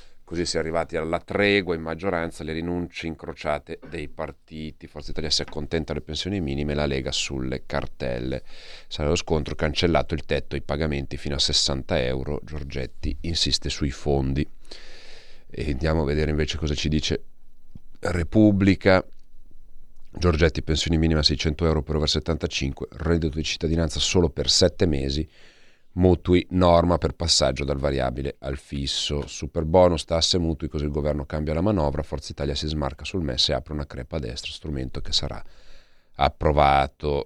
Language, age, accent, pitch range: Italian, 40-59, native, 70-85 Hz